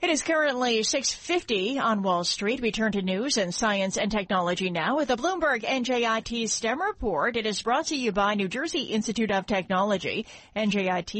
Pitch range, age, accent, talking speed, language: 190-230 Hz, 40-59, American, 180 wpm, English